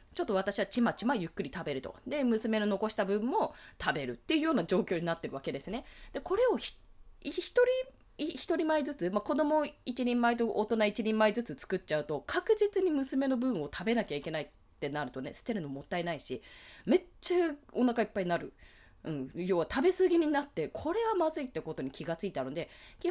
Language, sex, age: Japanese, female, 20-39